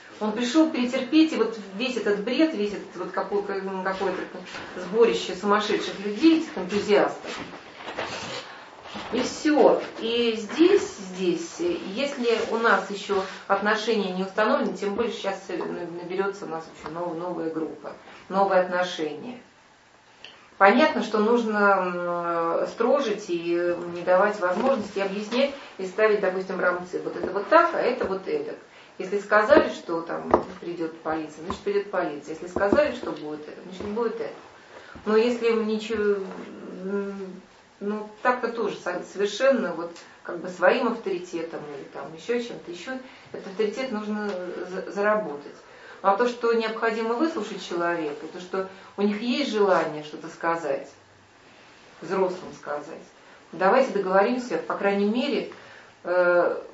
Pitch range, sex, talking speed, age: 180-240 Hz, female, 130 wpm, 30-49